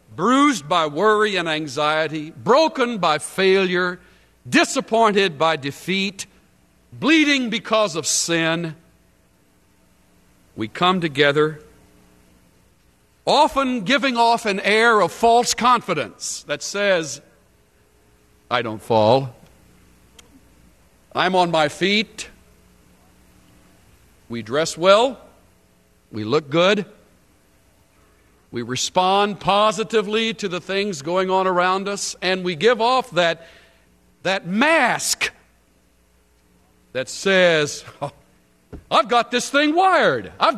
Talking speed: 100 wpm